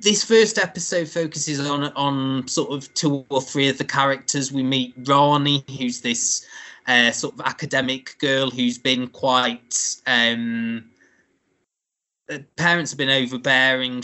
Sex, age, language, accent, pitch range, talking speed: male, 20-39, English, British, 125-155 Hz, 140 wpm